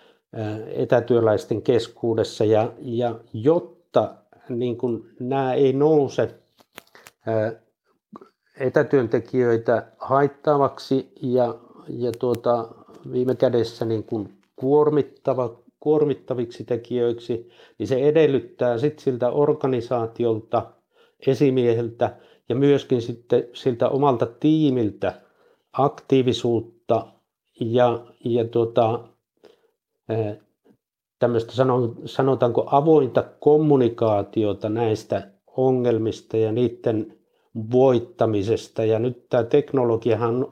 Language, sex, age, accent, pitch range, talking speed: Finnish, male, 60-79, native, 115-135 Hz, 75 wpm